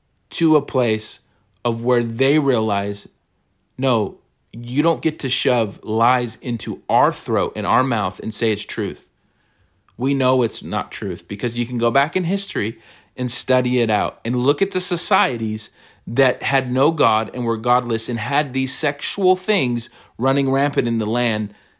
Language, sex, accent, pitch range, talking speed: English, male, American, 115-135 Hz, 170 wpm